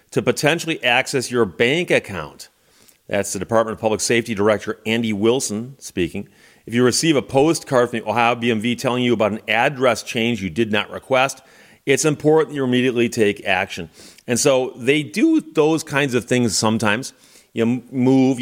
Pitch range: 105-130 Hz